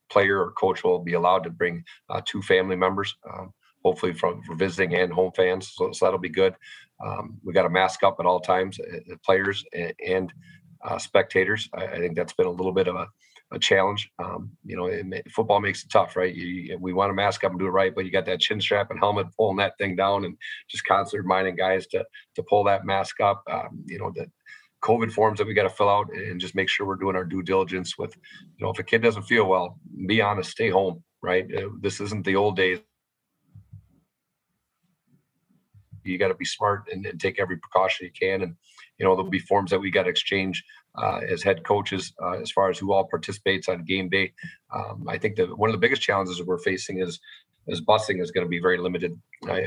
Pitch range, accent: 95-100 Hz, American